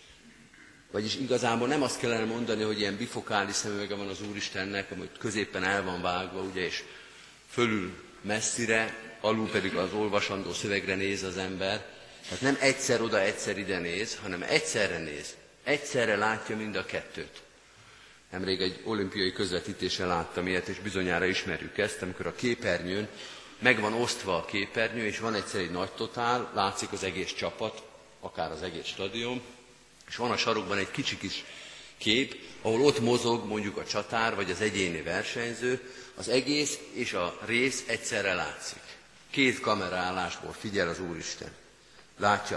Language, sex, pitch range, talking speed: Hungarian, male, 95-120 Hz, 150 wpm